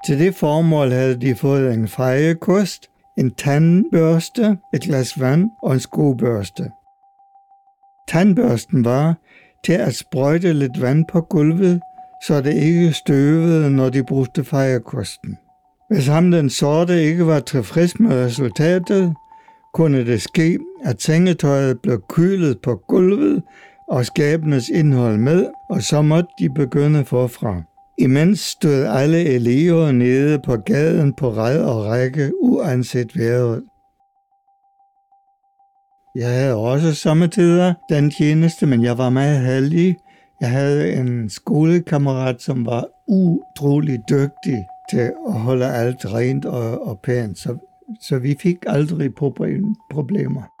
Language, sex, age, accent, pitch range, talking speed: Danish, male, 60-79, German, 130-185 Hz, 125 wpm